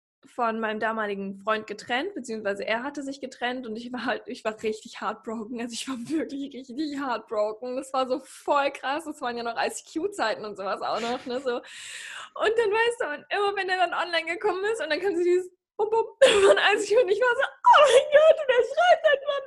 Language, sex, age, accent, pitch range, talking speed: German, female, 20-39, German, 230-300 Hz, 220 wpm